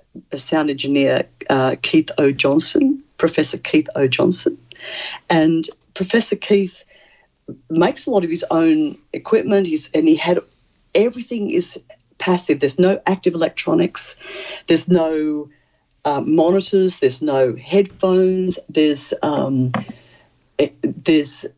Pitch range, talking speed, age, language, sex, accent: 150-200 Hz, 120 wpm, 50-69, English, female, Australian